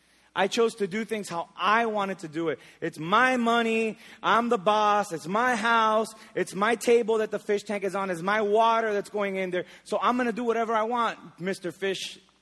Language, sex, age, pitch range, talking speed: English, male, 20-39, 175-220 Hz, 220 wpm